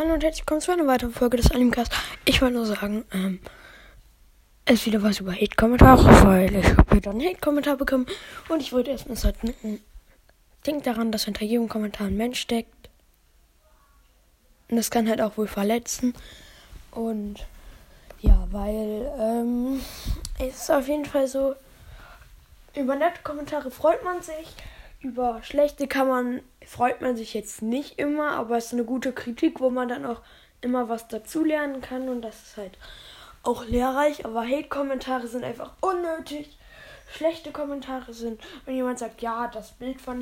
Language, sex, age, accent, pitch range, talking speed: German, female, 10-29, German, 225-275 Hz, 165 wpm